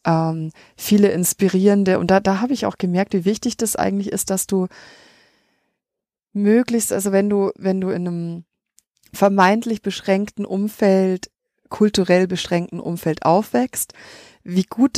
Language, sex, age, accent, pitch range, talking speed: German, female, 30-49, German, 175-205 Hz, 130 wpm